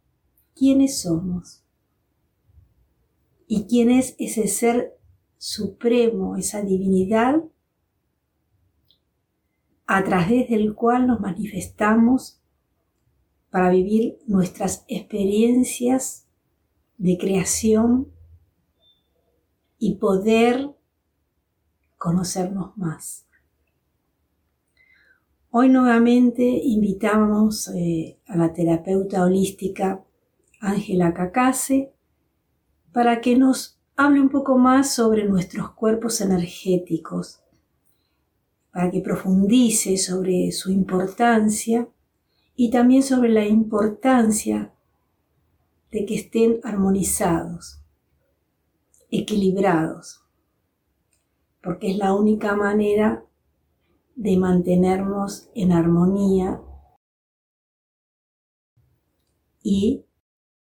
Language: Spanish